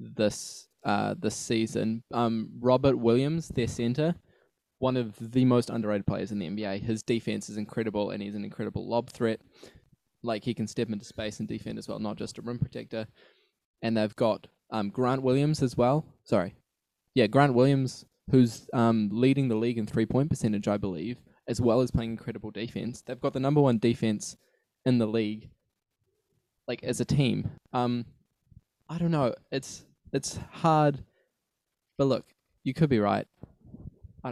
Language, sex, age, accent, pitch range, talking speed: English, male, 10-29, Australian, 110-135 Hz, 175 wpm